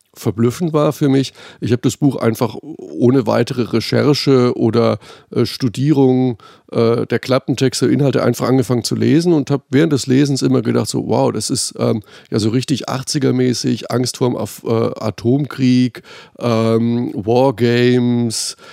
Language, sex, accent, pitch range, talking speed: German, male, German, 115-140 Hz, 145 wpm